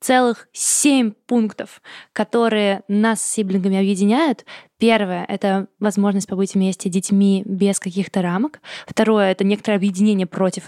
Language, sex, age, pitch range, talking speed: Russian, female, 20-39, 195-235 Hz, 130 wpm